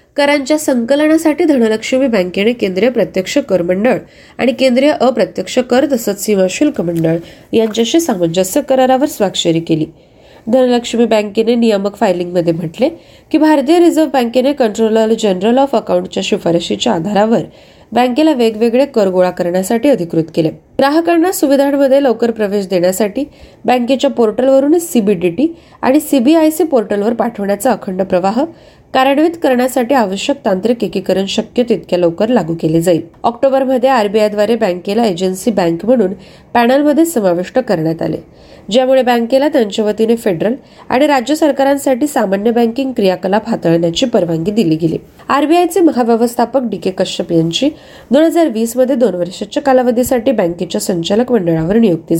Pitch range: 195-270 Hz